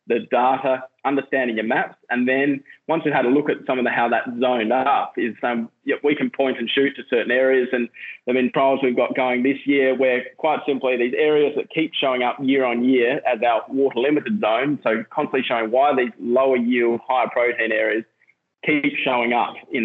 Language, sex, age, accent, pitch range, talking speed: English, male, 20-39, Australian, 120-140 Hz, 220 wpm